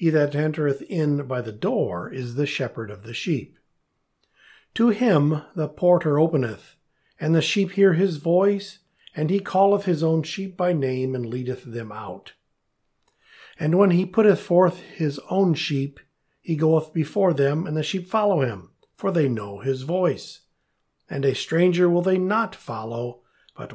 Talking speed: 165 wpm